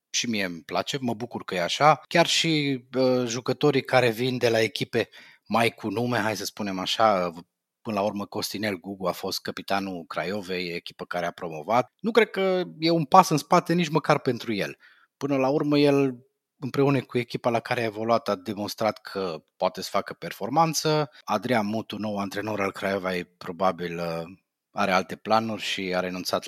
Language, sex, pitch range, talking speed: Romanian, male, 100-160 Hz, 180 wpm